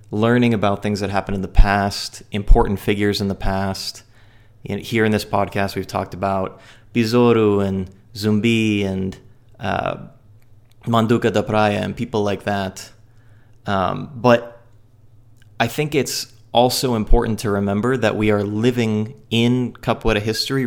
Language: English